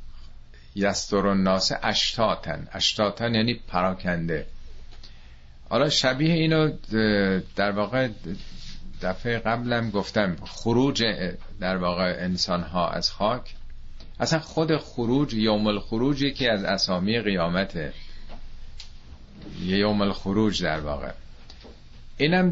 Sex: male